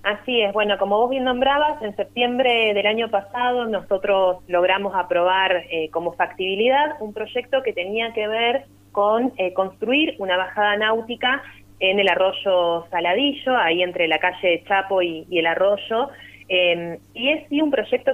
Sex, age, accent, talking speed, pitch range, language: female, 20-39, Argentinian, 160 wpm, 180-235 Hz, Spanish